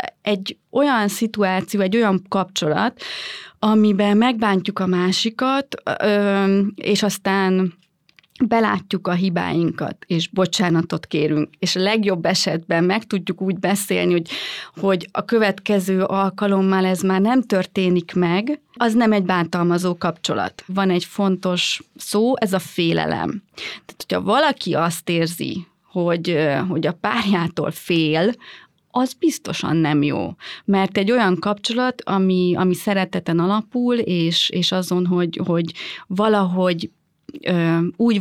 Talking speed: 120 wpm